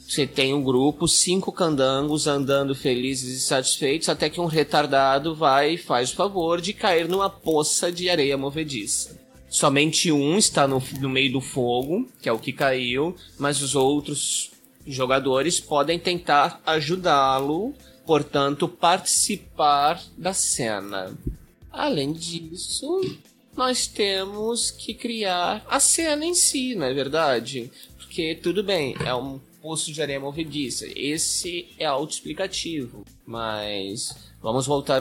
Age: 20-39